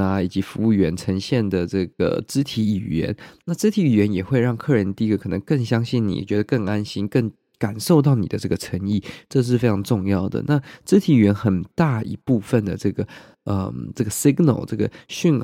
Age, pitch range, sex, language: 20-39, 100-125 Hz, male, Chinese